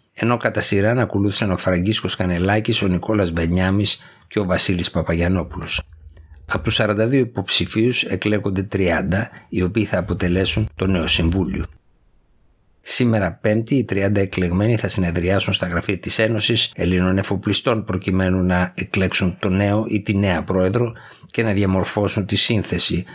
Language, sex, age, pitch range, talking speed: Greek, male, 60-79, 90-110 Hz, 140 wpm